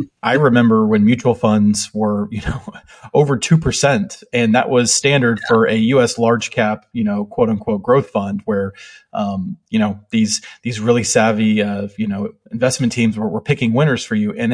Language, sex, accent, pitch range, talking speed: English, male, American, 110-135 Hz, 190 wpm